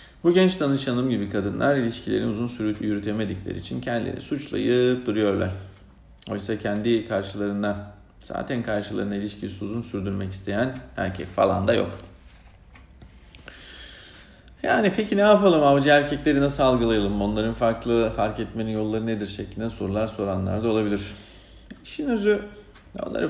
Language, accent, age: Turkish, native, 50-69